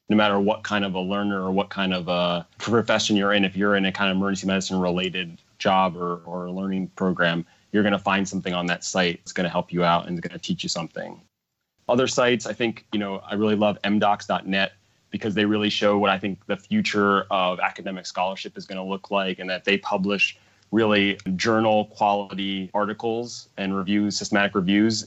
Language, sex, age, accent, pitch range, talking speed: English, male, 30-49, American, 90-100 Hz, 210 wpm